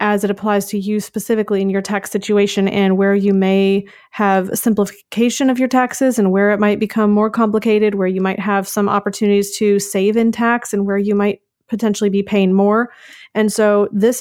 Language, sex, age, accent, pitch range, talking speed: English, female, 30-49, American, 195-215 Hz, 205 wpm